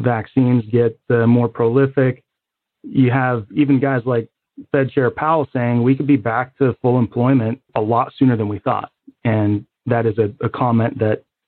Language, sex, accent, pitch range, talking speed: English, male, American, 115-135 Hz, 180 wpm